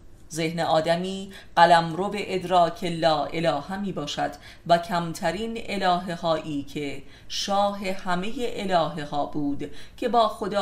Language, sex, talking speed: Persian, female, 125 wpm